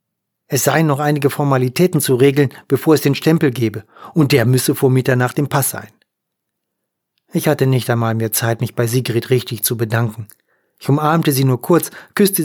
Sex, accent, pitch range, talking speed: male, German, 120-145 Hz, 185 wpm